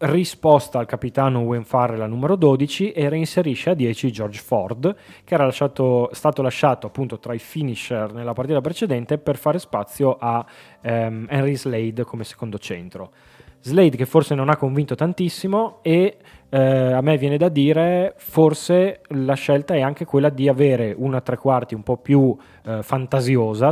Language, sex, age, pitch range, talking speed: Italian, male, 20-39, 115-150 Hz, 165 wpm